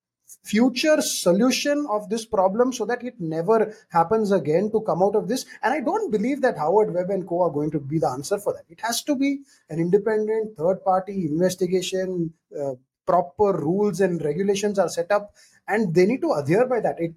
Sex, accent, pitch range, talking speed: male, Indian, 175-245 Hz, 205 wpm